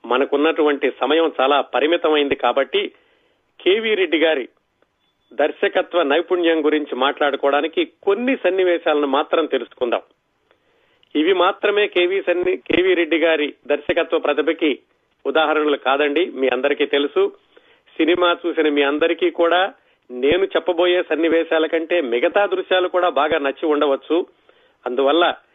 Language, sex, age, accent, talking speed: Telugu, male, 40-59, native, 100 wpm